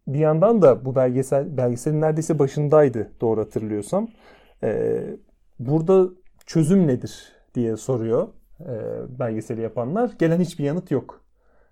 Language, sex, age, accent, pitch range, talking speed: Turkish, male, 30-49, native, 125-155 Hz, 110 wpm